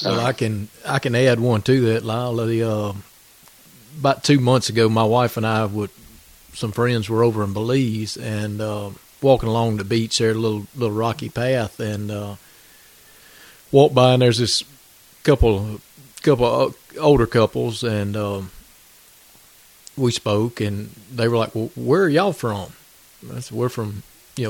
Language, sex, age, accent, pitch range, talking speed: English, male, 40-59, American, 110-130 Hz, 165 wpm